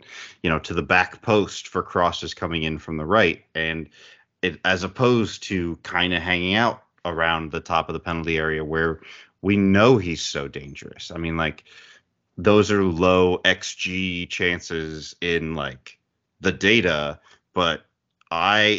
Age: 30-49